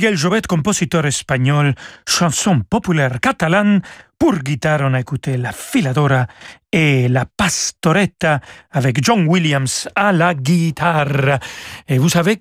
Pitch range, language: 140-185 Hz, French